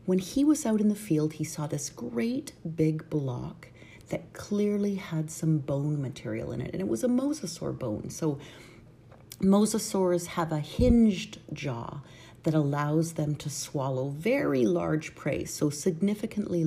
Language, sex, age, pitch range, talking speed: English, female, 40-59, 145-180 Hz, 155 wpm